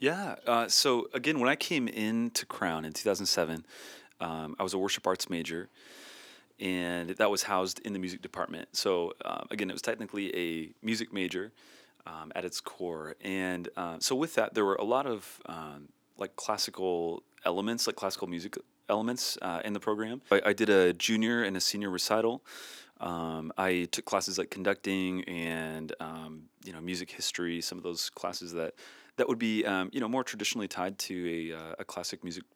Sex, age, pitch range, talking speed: male, 30-49, 85-105 Hz, 185 wpm